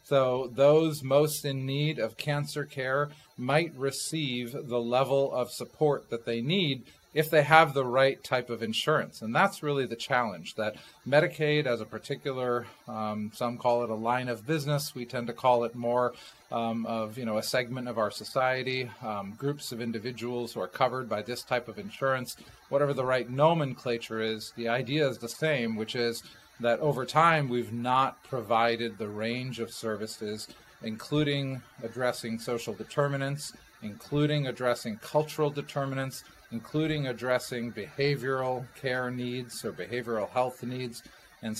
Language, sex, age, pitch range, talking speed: English, male, 40-59, 115-145 Hz, 160 wpm